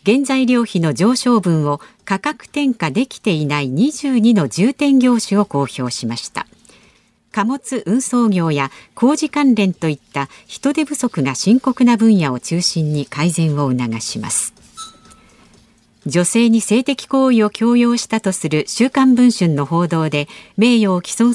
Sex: female